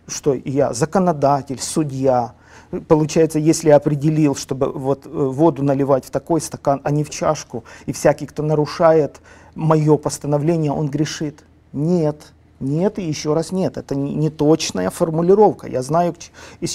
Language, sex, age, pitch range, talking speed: Russian, male, 40-59, 140-165 Hz, 140 wpm